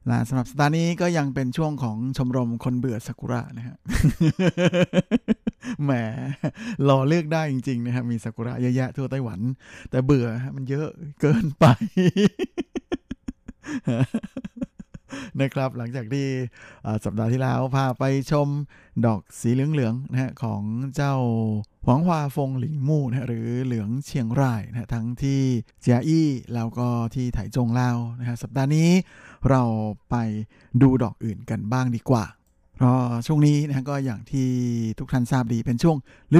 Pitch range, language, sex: 120-145 Hz, Thai, male